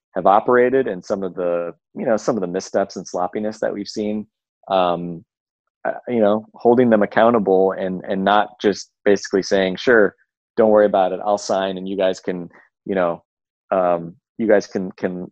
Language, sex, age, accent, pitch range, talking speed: English, male, 30-49, American, 90-105 Hz, 185 wpm